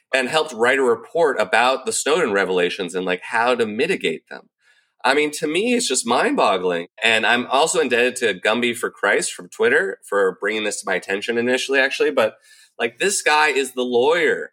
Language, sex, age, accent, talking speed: English, male, 30-49, American, 200 wpm